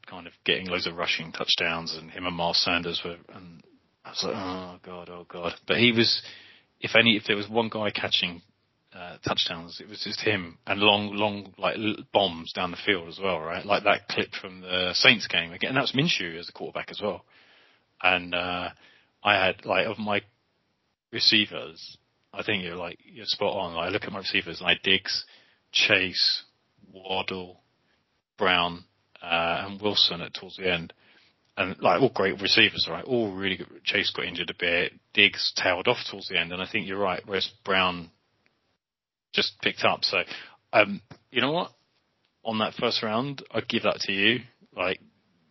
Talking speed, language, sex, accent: 195 wpm, English, male, British